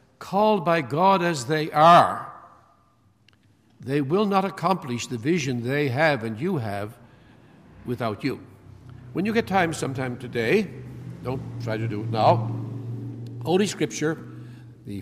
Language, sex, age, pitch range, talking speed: English, male, 60-79, 120-155 Hz, 135 wpm